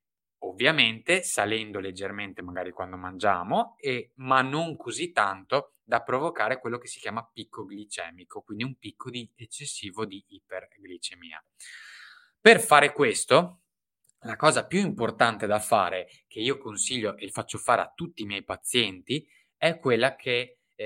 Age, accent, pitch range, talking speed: 20-39, native, 100-130 Hz, 145 wpm